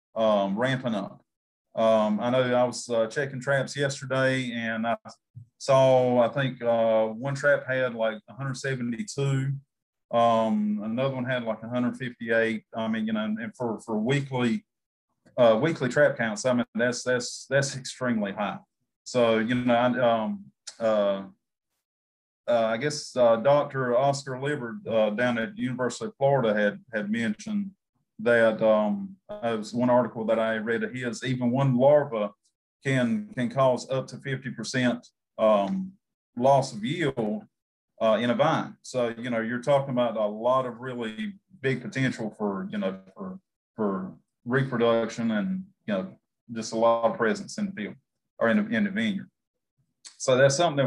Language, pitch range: English, 115-140 Hz